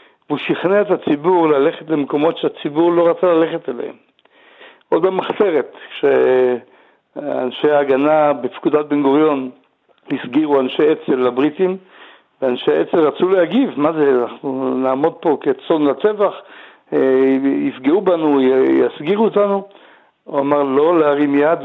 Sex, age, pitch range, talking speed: male, 60-79, 135-175 Hz, 115 wpm